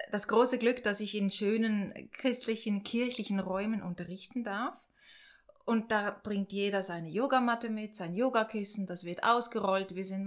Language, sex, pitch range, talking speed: German, female, 190-235 Hz, 150 wpm